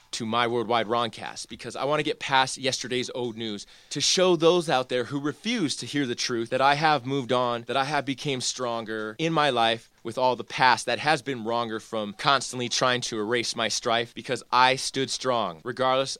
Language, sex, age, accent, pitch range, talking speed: English, male, 20-39, American, 115-145 Hz, 210 wpm